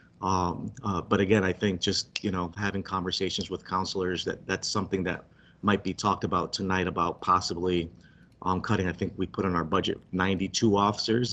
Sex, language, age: male, English, 30-49